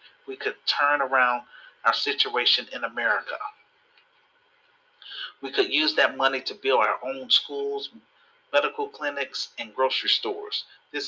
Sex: male